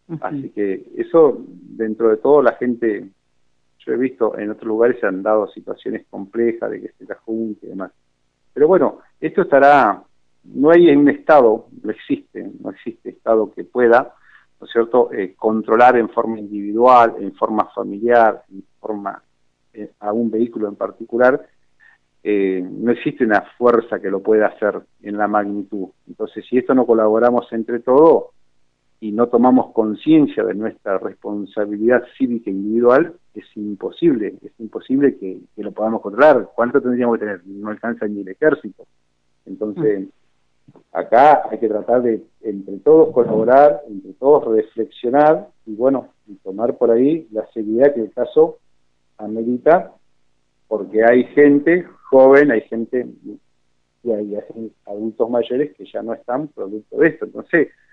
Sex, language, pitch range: male, Spanish, 100-125 Hz